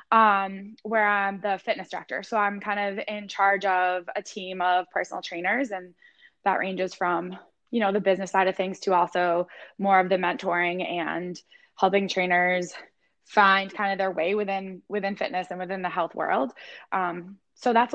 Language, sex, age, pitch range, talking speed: English, female, 10-29, 185-225 Hz, 180 wpm